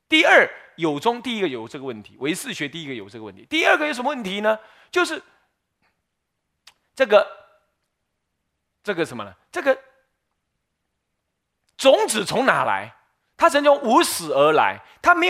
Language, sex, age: Chinese, male, 30-49